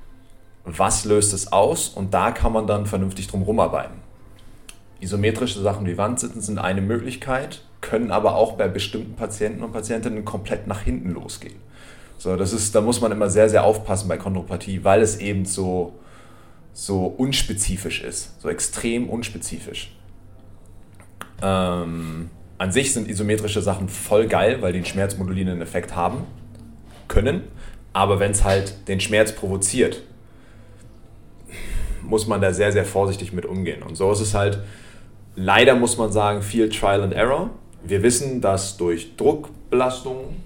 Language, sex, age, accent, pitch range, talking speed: German, male, 30-49, German, 95-110 Hz, 150 wpm